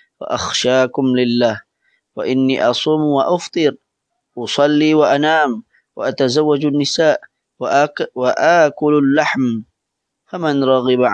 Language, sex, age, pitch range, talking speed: Malay, male, 20-39, 125-155 Hz, 70 wpm